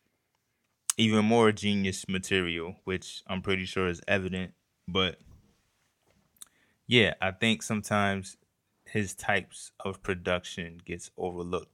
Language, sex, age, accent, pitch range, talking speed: English, male, 20-39, American, 90-115 Hz, 105 wpm